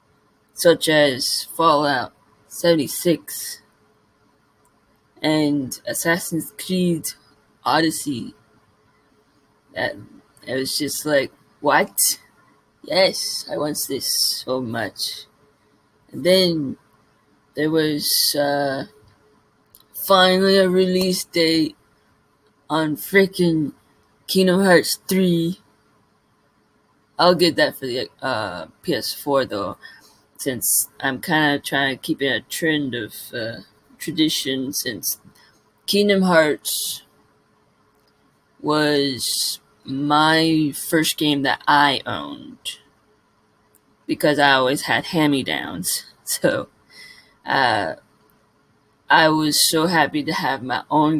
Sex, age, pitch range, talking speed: female, 20-39, 140-170 Hz, 95 wpm